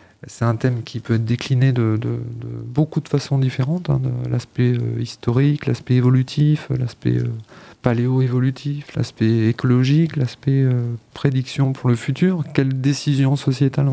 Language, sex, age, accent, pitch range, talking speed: French, male, 40-59, French, 120-140 Hz, 150 wpm